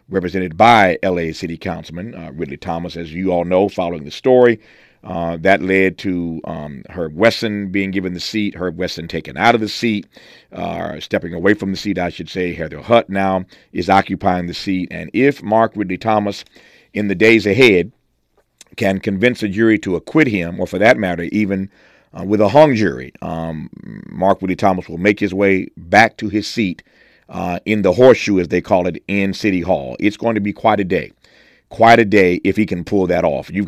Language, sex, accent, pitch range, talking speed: English, male, American, 90-110 Hz, 205 wpm